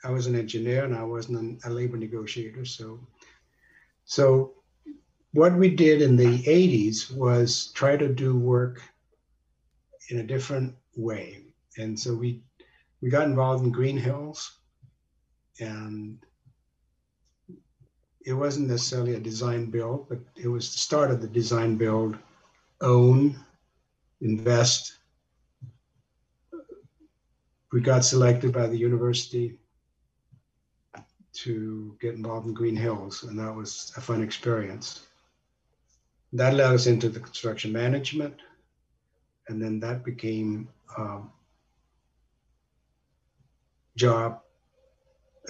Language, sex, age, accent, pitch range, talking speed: English, male, 60-79, American, 105-125 Hz, 110 wpm